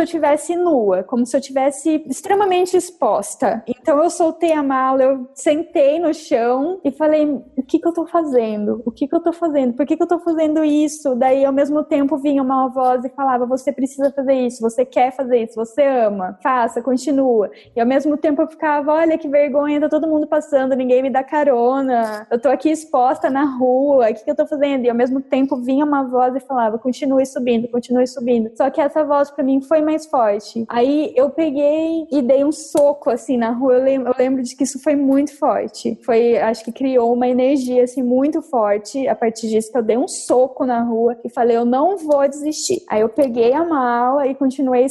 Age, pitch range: 20-39, 250-295 Hz